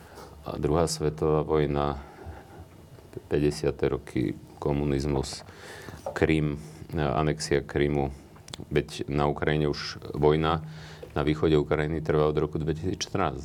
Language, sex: Slovak, male